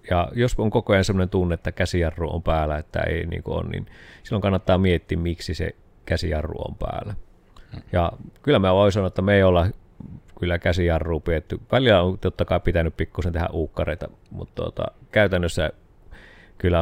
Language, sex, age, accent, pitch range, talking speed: Finnish, male, 30-49, native, 85-105 Hz, 170 wpm